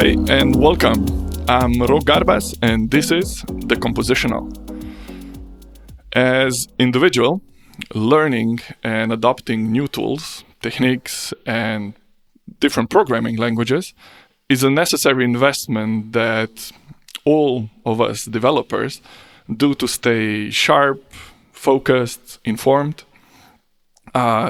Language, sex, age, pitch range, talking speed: English, male, 20-39, 115-145 Hz, 95 wpm